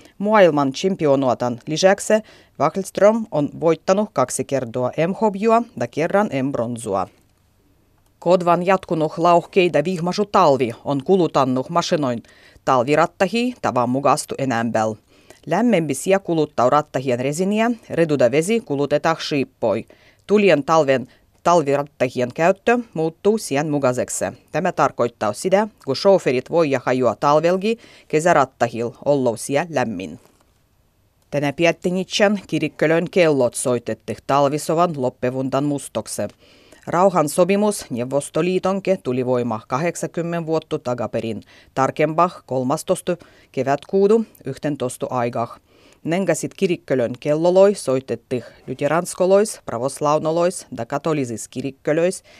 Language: Finnish